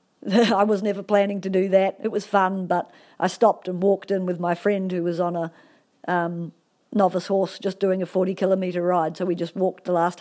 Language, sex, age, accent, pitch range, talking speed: English, female, 50-69, Australian, 185-215 Hz, 215 wpm